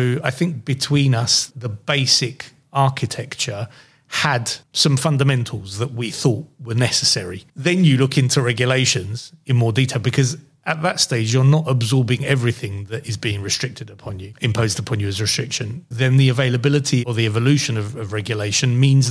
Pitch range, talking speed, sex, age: 115-140 Hz, 165 wpm, male, 30-49